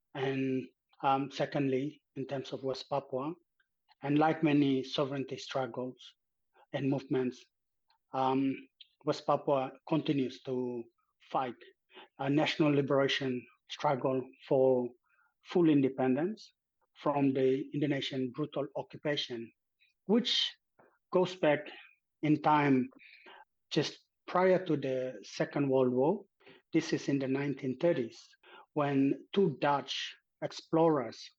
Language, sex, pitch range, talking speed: English, male, 130-155 Hz, 105 wpm